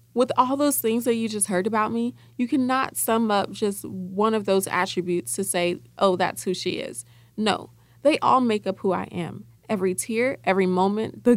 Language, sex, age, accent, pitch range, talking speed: English, female, 20-39, American, 190-245 Hz, 205 wpm